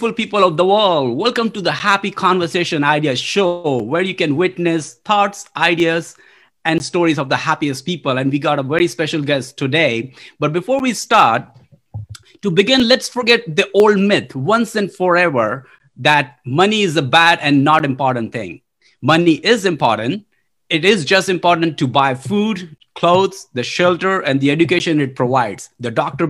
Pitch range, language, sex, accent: 140-195 Hz, English, male, Indian